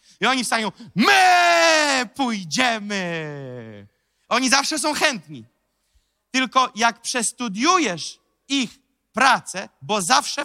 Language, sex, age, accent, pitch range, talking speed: Polish, male, 40-59, native, 165-260 Hz, 90 wpm